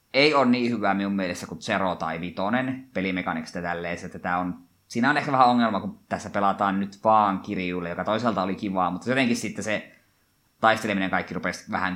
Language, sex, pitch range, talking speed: Finnish, male, 95-125 Hz, 180 wpm